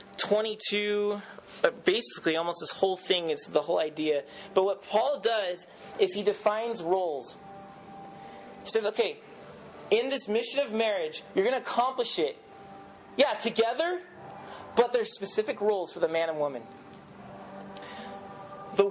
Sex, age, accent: male, 30-49, American